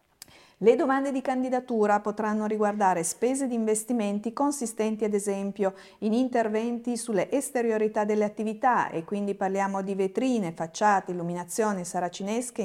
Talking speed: 125 wpm